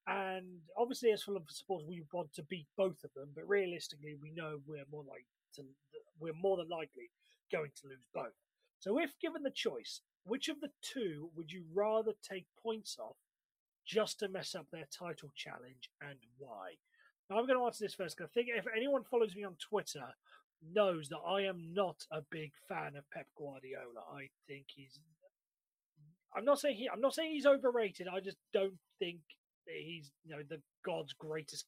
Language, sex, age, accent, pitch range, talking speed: English, male, 30-49, British, 150-205 Hz, 190 wpm